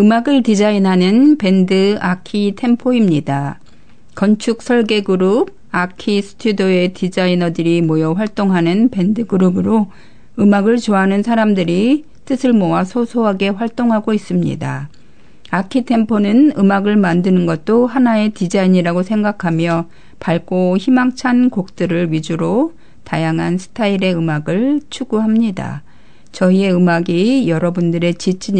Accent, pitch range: native, 170-215 Hz